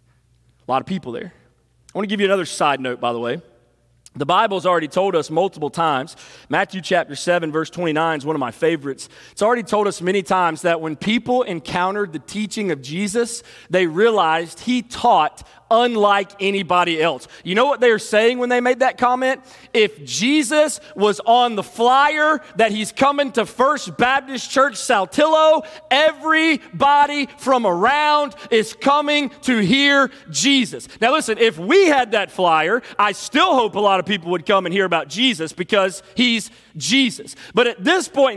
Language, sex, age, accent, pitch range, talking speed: English, male, 30-49, American, 195-300 Hz, 175 wpm